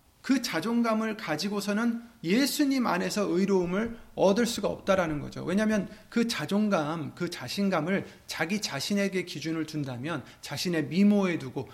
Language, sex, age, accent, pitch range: Korean, male, 30-49, native, 145-210 Hz